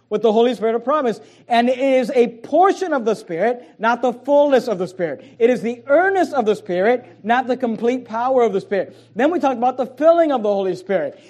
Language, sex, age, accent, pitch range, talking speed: English, male, 40-59, American, 195-250 Hz, 235 wpm